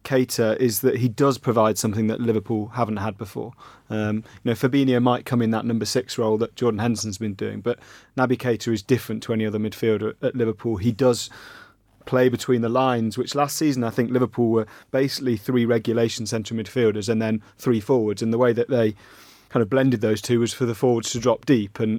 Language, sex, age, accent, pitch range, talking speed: English, male, 30-49, British, 115-130 Hz, 215 wpm